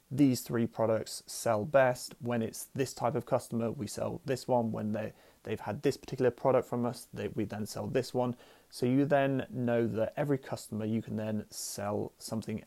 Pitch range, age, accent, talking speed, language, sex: 110-130 Hz, 30-49, British, 200 wpm, English, male